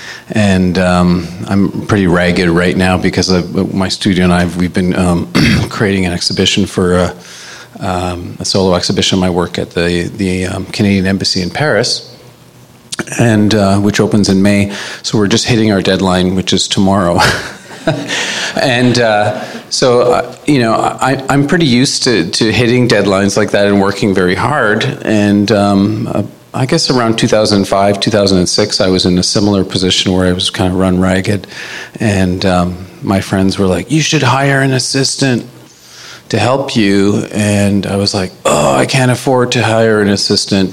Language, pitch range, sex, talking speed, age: English, 95-110 Hz, male, 170 wpm, 40-59